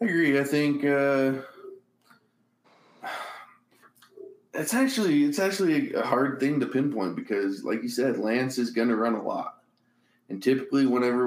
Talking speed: 145 wpm